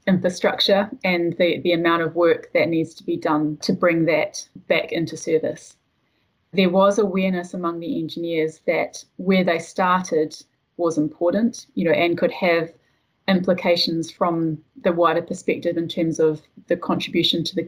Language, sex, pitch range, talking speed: English, female, 160-185 Hz, 160 wpm